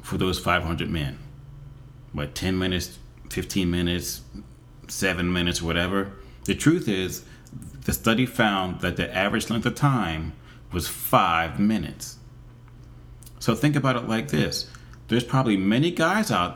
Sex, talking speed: male, 140 wpm